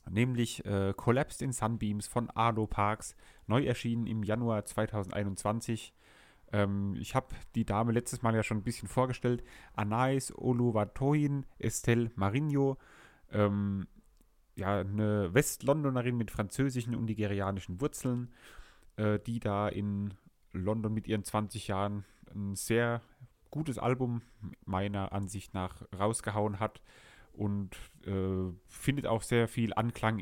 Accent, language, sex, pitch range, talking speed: German, German, male, 95-115 Hz, 125 wpm